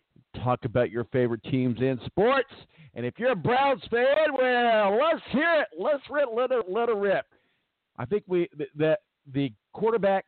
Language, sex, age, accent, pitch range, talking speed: English, male, 50-69, American, 135-195 Hz, 180 wpm